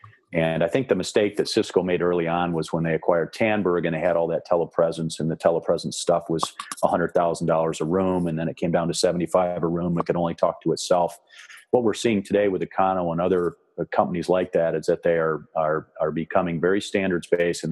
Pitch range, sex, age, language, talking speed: 85-95 Hz, male, 40-59, English, 235 wpm